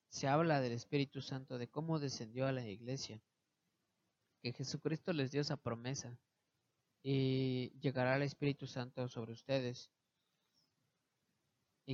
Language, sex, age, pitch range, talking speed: Spanish, male, 30-49, 120-145 Hz, 125 wpm